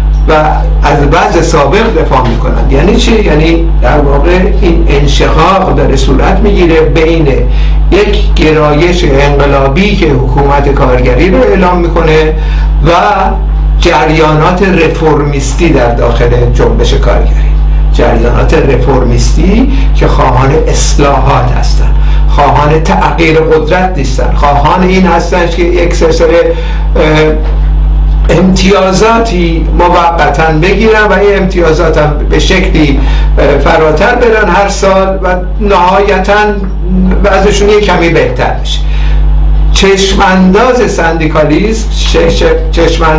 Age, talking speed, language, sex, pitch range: 60-79, 95 wpm, Persian, male, 145-180 Hz